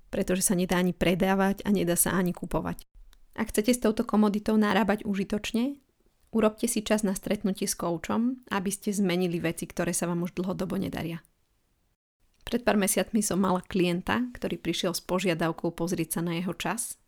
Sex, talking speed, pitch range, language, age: female, 170 wpm, 175-200 Hz, Slovak, 20-39